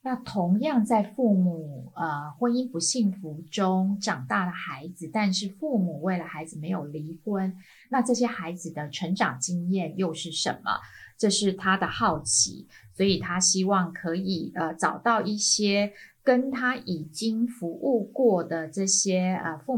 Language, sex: Chinese, female